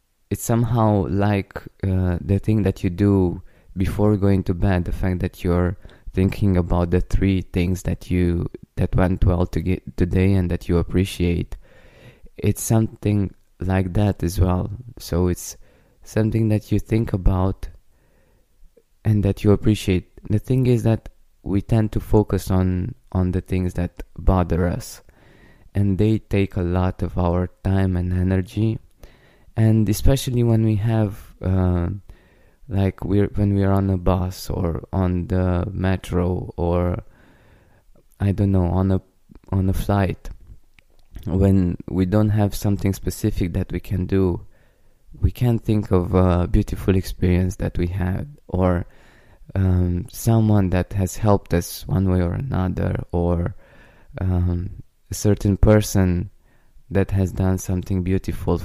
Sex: male